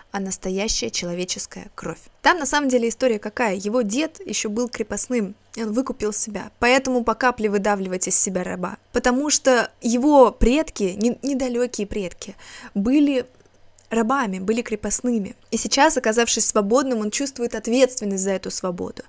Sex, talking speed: female, 145 wpm